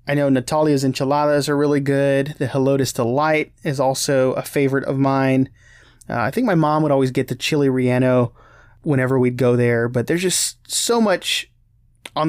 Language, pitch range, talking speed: English, 125-150 Hz, 180 wpm